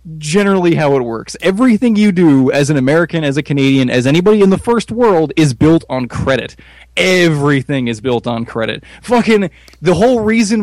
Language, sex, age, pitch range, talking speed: English, male, 20-39, 125-180 Hz, 180 wpm